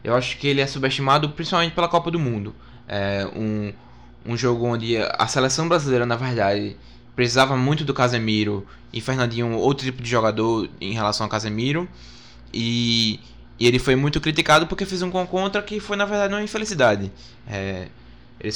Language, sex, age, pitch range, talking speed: Portuguese, male, 20-39, 110-135 Hz, 170 wpm